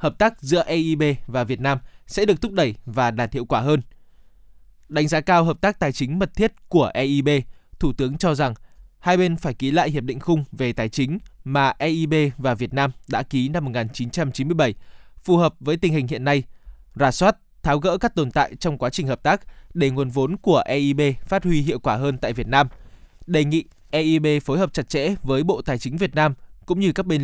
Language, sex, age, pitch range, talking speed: Vietnamese, male, 20-39, 130-170 Hz, 220 wpm